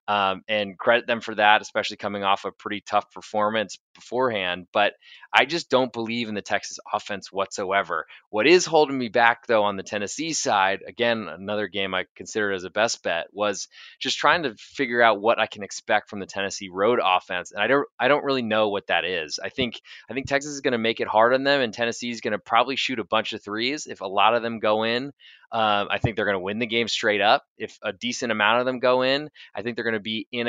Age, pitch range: 20-39, 105-120 Hz